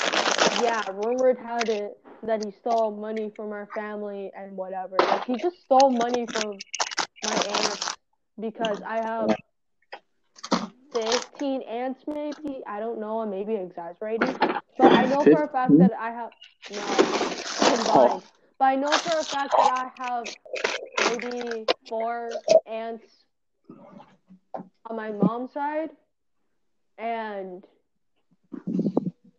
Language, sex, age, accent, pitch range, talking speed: English, female, 20-39, American, 205-255 Hz, 125 wpm